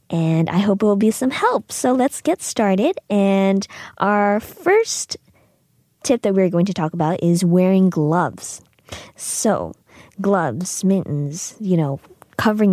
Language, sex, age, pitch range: Korean, female, 20-39, 175-240 Hz